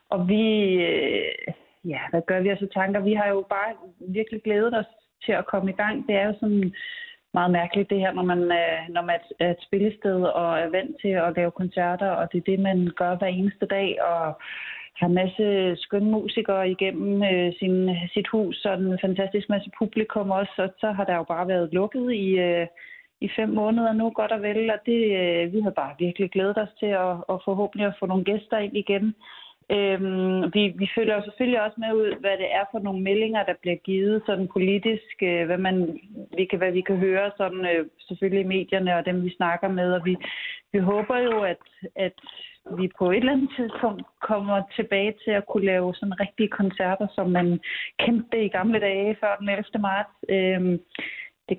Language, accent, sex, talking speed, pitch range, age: Danish, native, female, 200 wpm, 185-215 Hz, 30-49